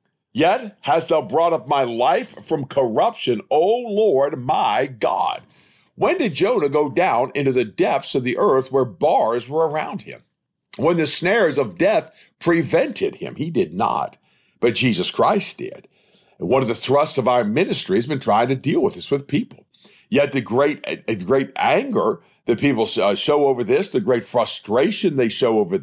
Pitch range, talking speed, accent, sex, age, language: 130-185 Hz, 175 wpm, American, male, 50-69, English